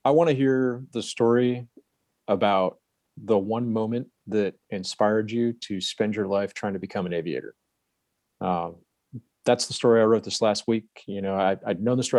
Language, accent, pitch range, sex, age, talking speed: English, American, 95-115 Hz, male, 30-49, 185 wpm